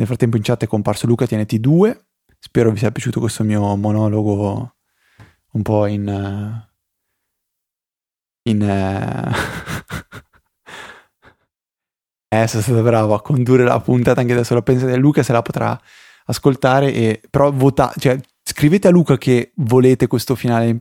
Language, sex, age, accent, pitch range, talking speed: Italian, male, 20-39, native, 105-125 Hz, 145 wpm